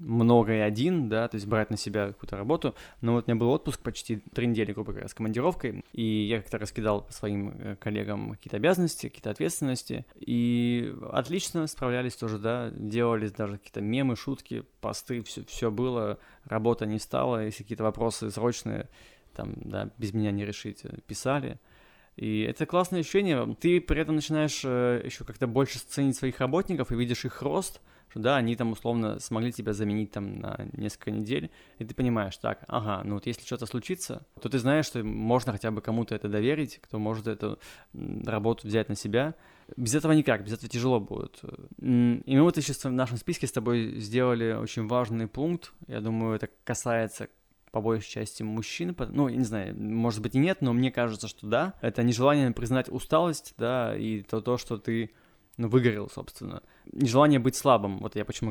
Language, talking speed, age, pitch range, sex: Russian, 185 wpm, 20-39, 110-130 Hz, male